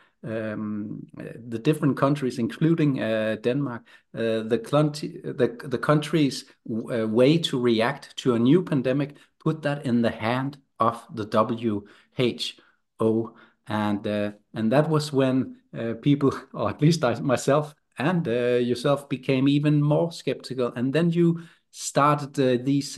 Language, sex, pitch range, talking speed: Danish, male, 120-150 Hz, 145 wpm